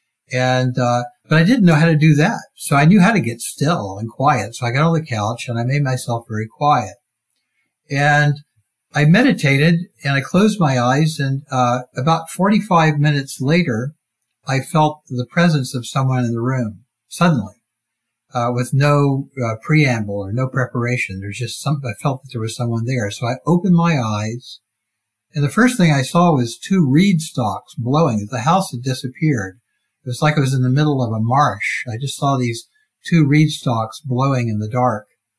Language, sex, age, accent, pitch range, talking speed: English, male, 60-79, American, 115-150 Hz, 195 wpm